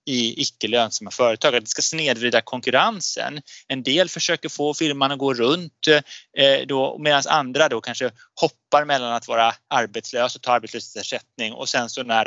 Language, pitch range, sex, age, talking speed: Swedish, 125-165 Hz, male, 30-49, 150 wpm